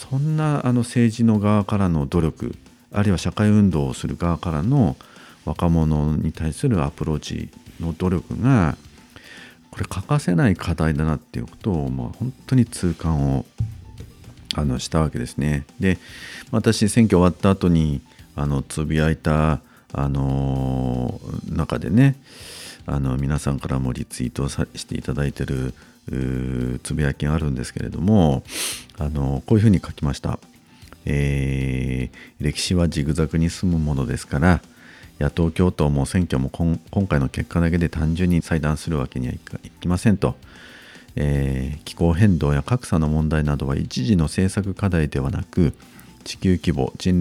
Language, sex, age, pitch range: Japanese, male, 50-69, 70-90 Hz